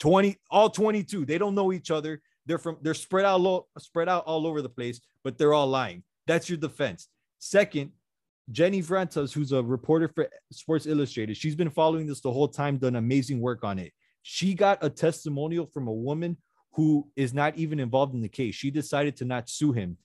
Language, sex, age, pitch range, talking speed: English, male, 30-49, 130-165 Hz, 205 wpm